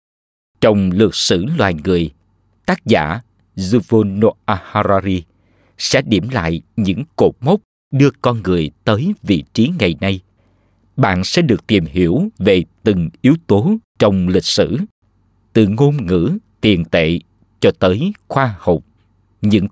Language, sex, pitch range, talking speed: Vietnamese, male, 90-120 Hz, 135 wpm